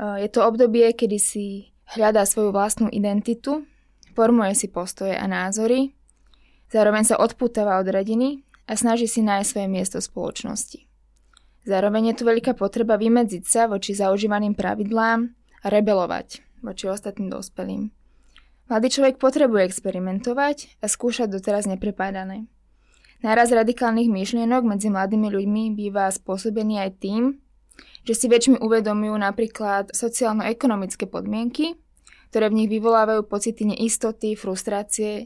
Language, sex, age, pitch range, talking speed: Slovak, female, 20-39, 200-235 Hz, 125 wpm